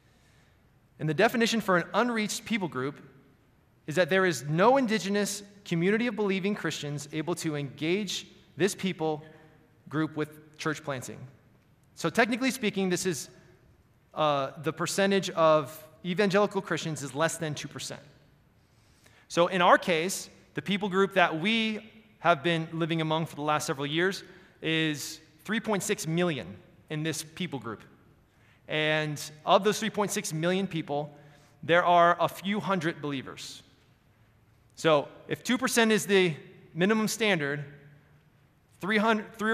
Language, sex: English, male